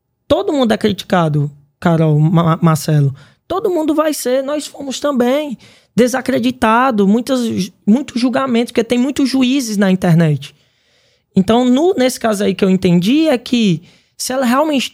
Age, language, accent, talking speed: 20-39, Portuguese, Brazilian, 140 wpm